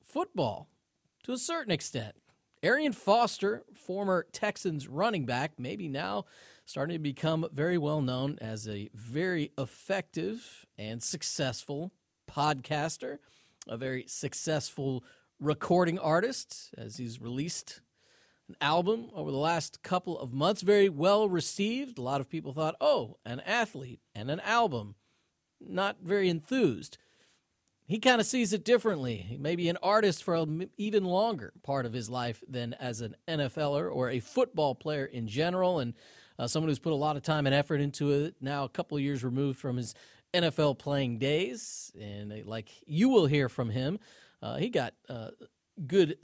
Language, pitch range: English, 135-180 Hz